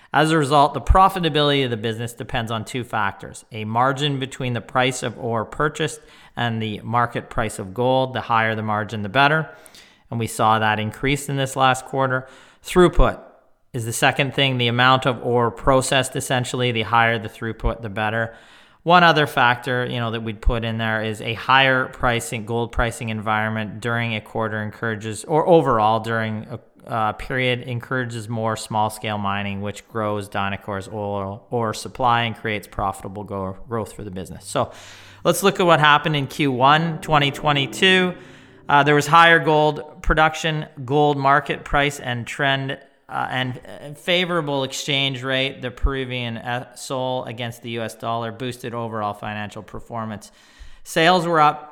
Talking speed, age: 165 wpm, 40-59